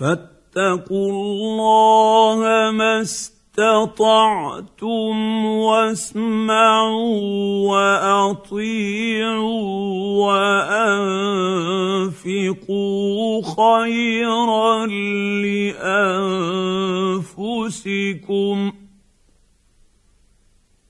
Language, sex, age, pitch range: Arabic, male, 50-69, 150-220 Hz